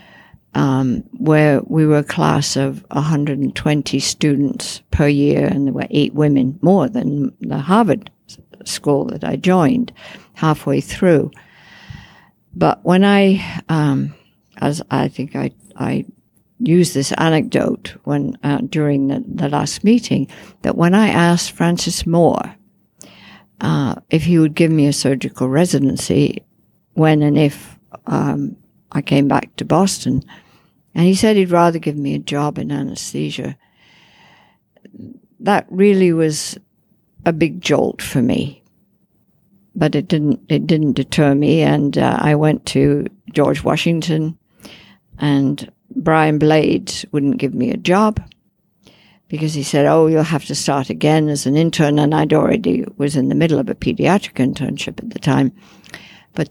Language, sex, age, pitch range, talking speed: English, female, 60-79, 145-175 Hz, 145 wpm